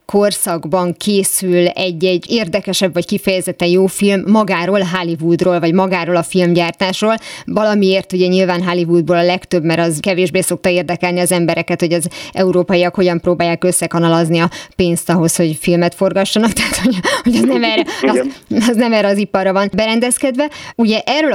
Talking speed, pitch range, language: 150 wpm, 180-230 Hz, Hungarian